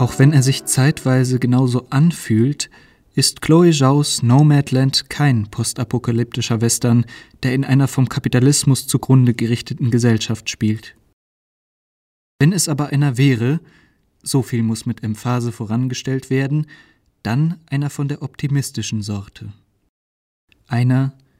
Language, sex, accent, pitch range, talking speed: German, male, German, 115-140 Hz, 120 wpm